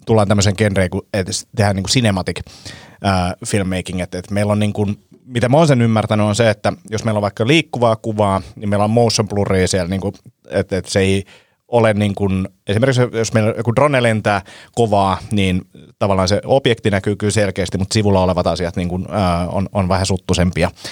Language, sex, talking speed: Finnish, male, 180 wpm